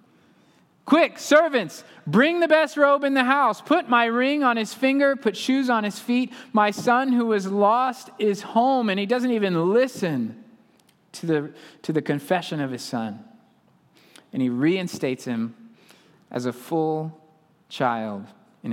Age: 20-39